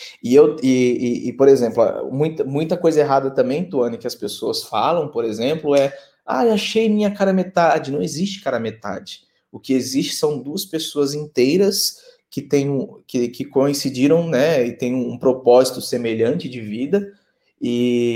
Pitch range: 125-180 Hz